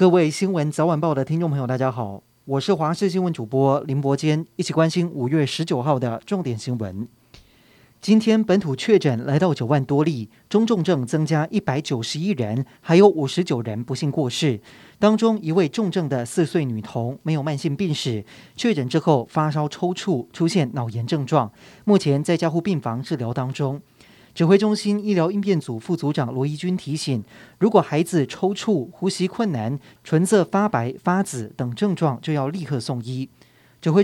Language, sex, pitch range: Chinese, male, 130-180 Hz